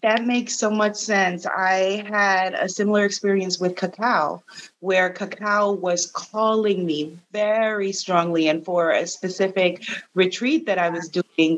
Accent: American